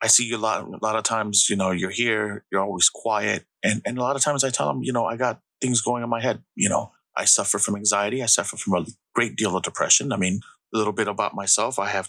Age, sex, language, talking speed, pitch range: 30-49, male, English, 285 wpm, 105-125 Hz